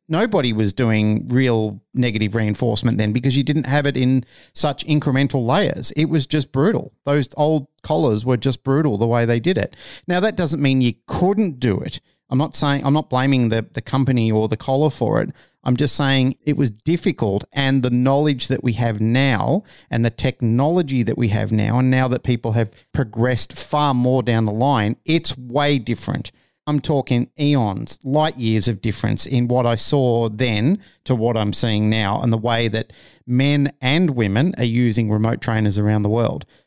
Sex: male